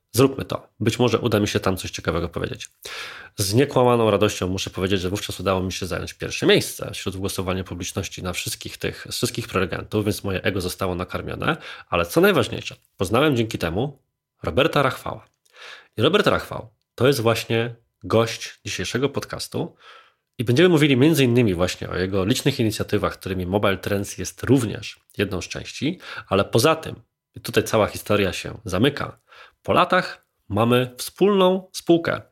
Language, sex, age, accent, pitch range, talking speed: Polish, male, 20-39, native, 95-120 Hz, 160 wpm